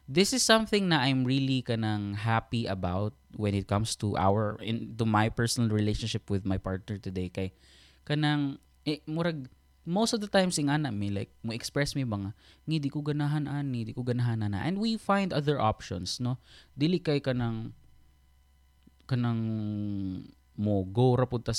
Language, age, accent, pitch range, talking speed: Filipino, 20-39, native, 100-160 Hz, 160 wpm